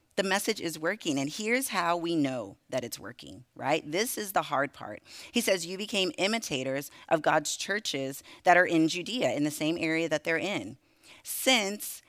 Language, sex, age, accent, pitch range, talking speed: English, female, 30-49, American, 150-205 Hz, 190 wpm